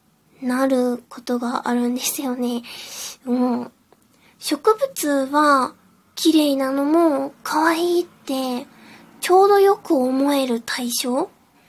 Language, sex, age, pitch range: Japanese, female, 20-39, 240-300 Hz